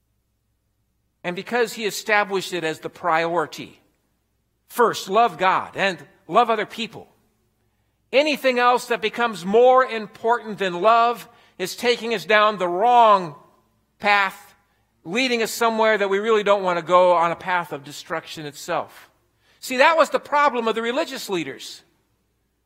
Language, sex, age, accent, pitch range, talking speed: English, male, 50-69, American, 175-255 Hz, 145 wpm